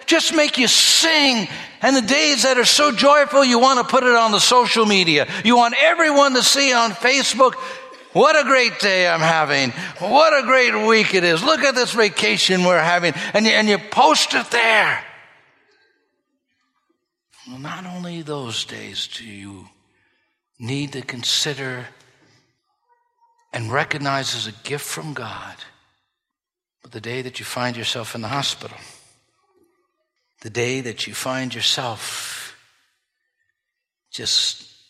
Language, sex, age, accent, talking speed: English, male, 60-79, American, 145 wpm